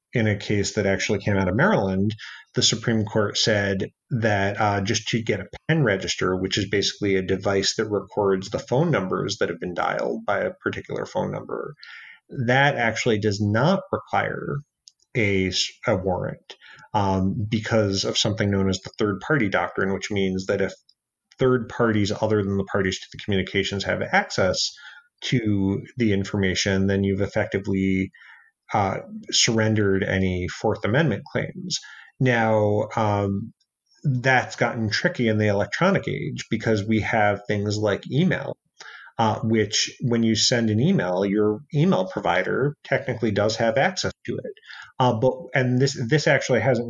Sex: male